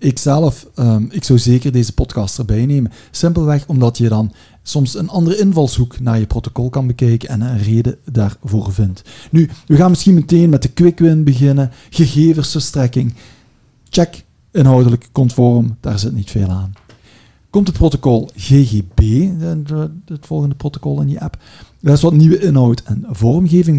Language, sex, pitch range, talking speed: Dutch, male, 120-160 Hz, 160 wpm